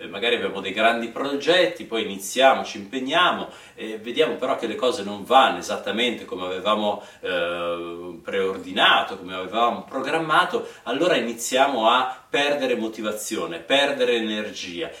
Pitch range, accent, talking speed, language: 115-160 Hz, native, 130 wpm, Italian